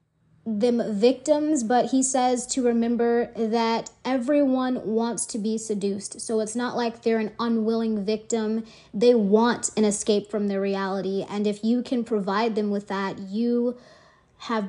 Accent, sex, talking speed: American, female, 155 wpm